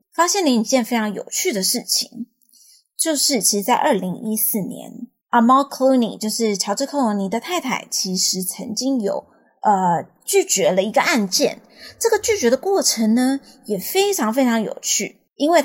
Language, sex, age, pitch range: Chinese, female, 20-39, 205-265 Hz